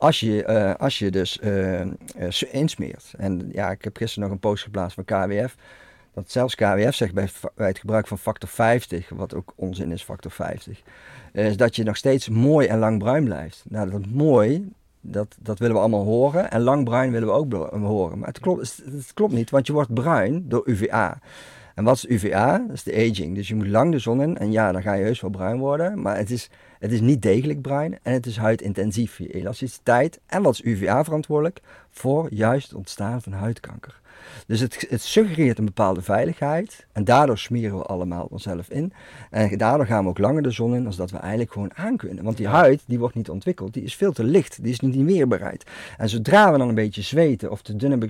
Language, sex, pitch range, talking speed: Dutch, male, 100-135 Hz, 230 wpm